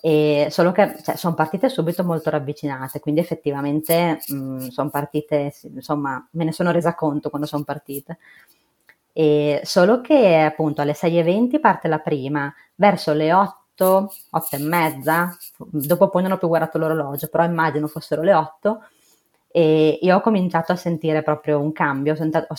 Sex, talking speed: female, 150 wpm